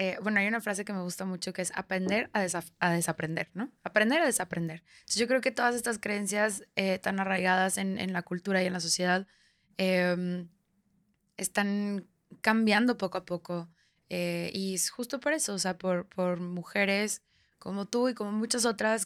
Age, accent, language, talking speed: 20-39, Mexican, Spanish, 190 wpm